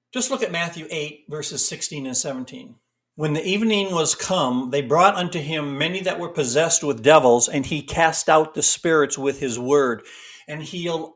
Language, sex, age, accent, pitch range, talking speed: English, male, 60-79, American, 145-200 Hz, 190 wpm